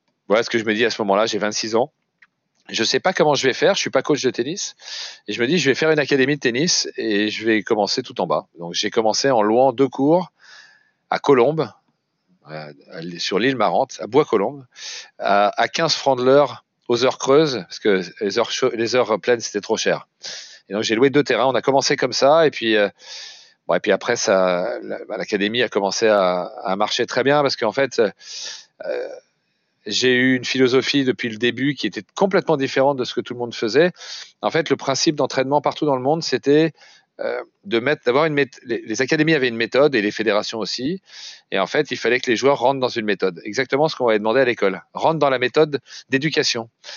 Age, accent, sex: 40-59, French, male